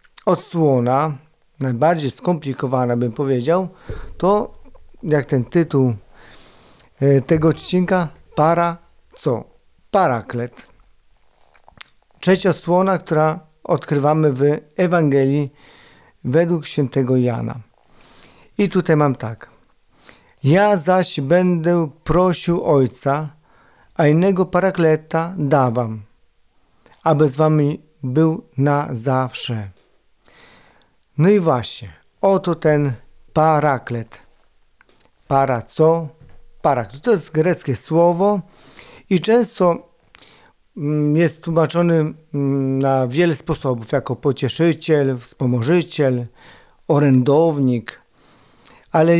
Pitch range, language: 135-175 Hz, Polish